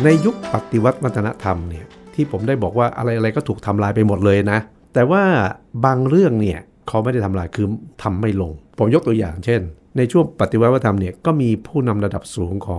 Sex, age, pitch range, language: male, 60-79, 100-130 Hz, Thai